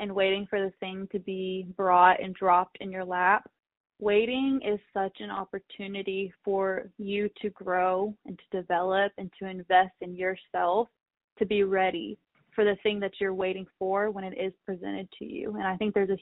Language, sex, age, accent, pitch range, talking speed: English, female, 20-39, American, 190-210 Hz, 190 wpm